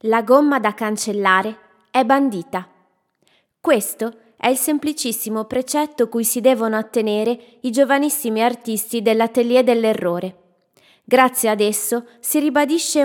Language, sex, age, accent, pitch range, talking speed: Italian, female, 20-39, native, 200-250 Hz, 115 wpm